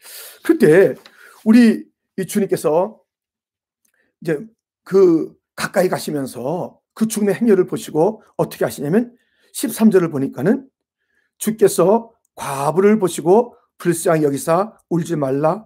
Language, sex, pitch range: Korean, male, 175-245 Hz